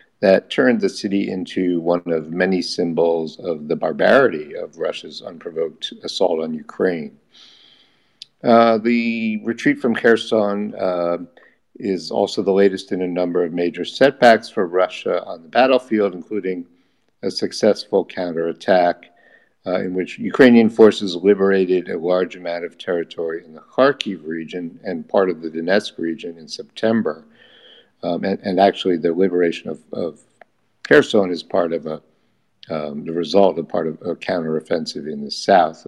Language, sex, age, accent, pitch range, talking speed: English, male, 50-69, American, 85-120 Hz, 150 wpm